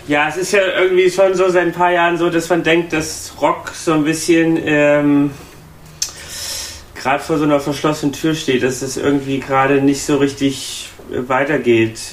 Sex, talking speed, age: male, 180 wpm, 30-49